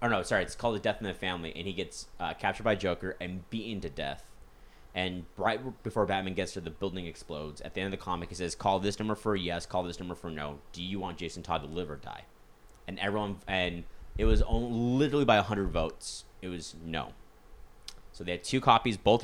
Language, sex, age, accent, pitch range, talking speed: English, male, 20-39, American, 85-105 Hz, 245 wpm